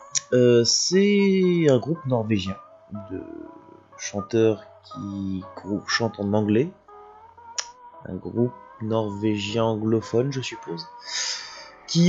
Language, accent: French, French